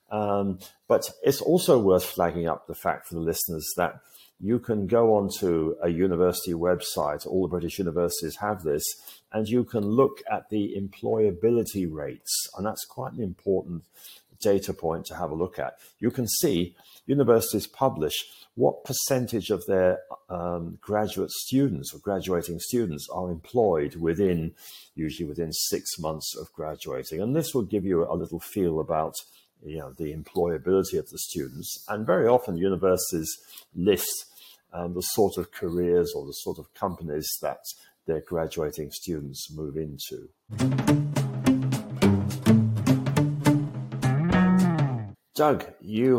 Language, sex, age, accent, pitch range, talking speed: English, male, 50-69, British, 85-115 Hz, 145 wpm